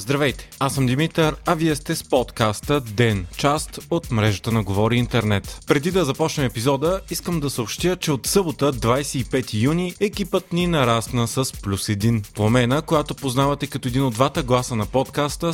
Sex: male